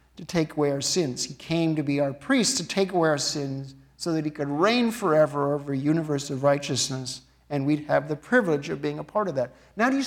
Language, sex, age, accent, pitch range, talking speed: English, male, 50-69, American, 145-215 Hz, 245 wpm